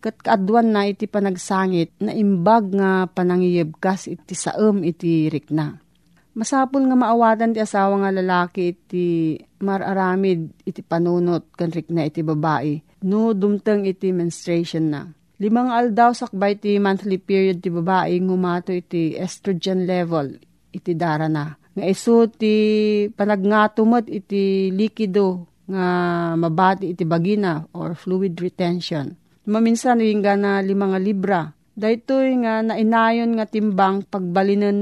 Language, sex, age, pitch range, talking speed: Filipino, female, 40-59, 175-210 Hz, 120 wpm